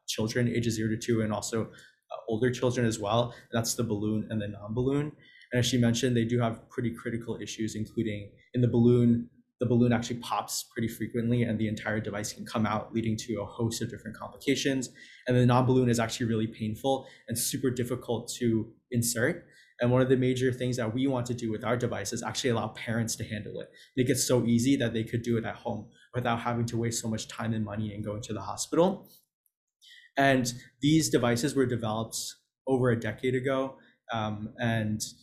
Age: 20-39